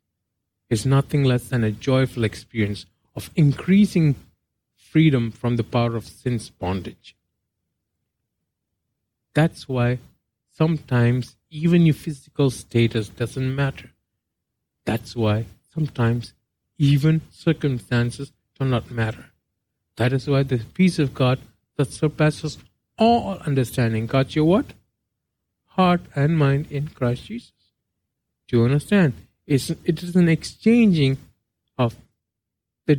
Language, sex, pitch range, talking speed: English, male, 110-145 Hz, 115 wpm